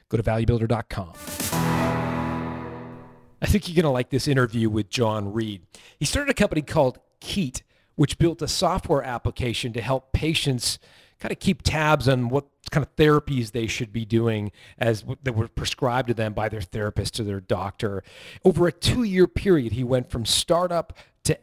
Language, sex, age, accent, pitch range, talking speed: English, male, 40-59, American, 115-140 Hz, 170 wpm